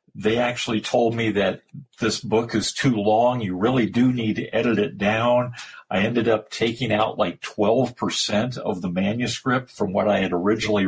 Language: English